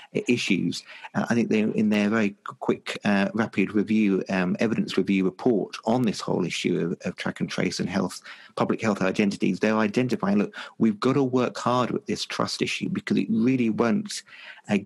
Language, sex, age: English, male, 50-69